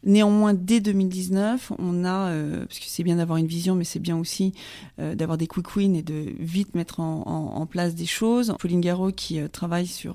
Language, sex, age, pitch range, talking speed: French, female, 30-49, 175-200 Hz, 225 wpm